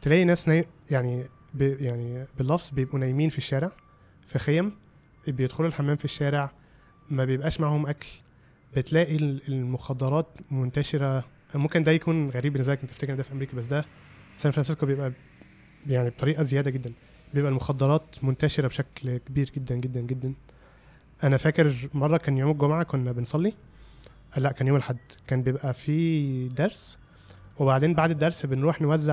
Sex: male